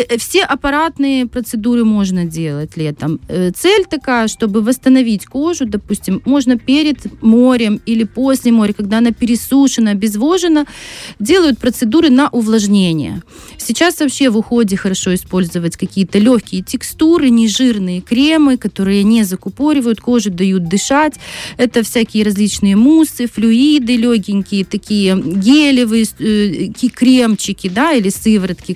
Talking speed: 115 wpm